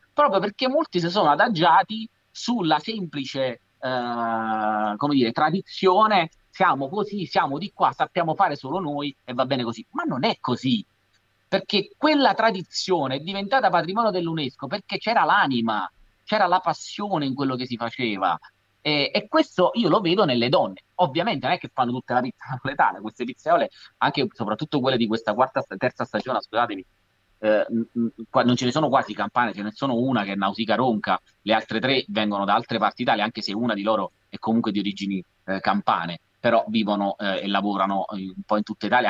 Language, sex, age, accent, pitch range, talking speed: Italian, male, 30-49, native, 105-155 Hz, 185 wpm